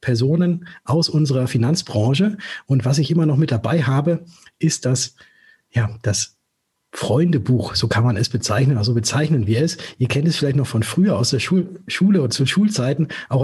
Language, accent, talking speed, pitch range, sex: German, German, 185 wpm, 125-160 Hz, male